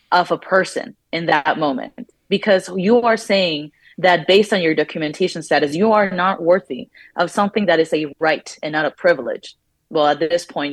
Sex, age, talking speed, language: female, 20-39, 190 wpm, English